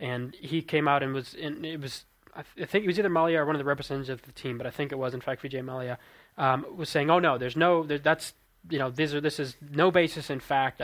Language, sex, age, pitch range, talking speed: English, male, 20-39, 130-155 Hz, 280 wpm